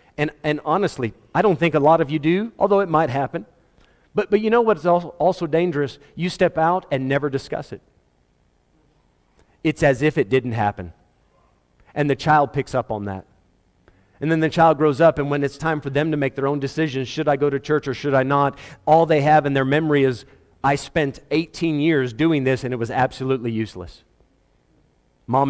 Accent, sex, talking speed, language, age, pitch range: American, male, 205 wpm, English, 40-59, 115-165 Hz